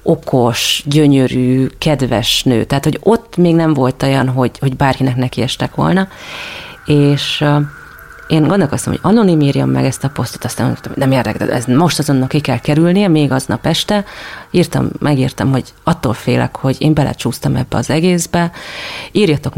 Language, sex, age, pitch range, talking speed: Hungarian, female, 30-49, 125-150 Hz, 165 wpm